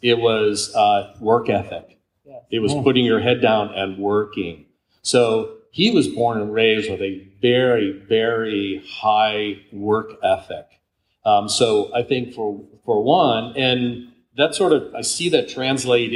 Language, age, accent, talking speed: English, 40-59, American, 150 wpm